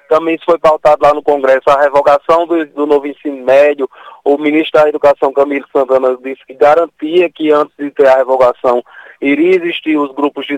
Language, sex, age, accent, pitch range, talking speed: Portuguese, male, 20-39, Brazilian, 145-200 Hz, 195 wpm